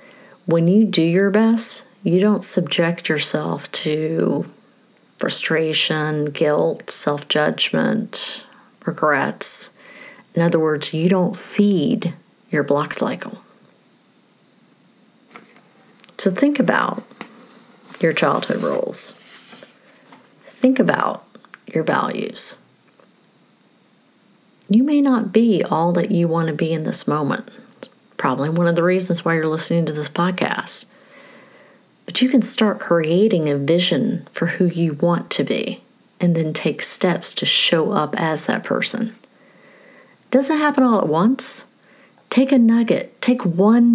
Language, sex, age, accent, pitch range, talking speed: English, female, 40-59, American, 170-240 Hz, 125 wpm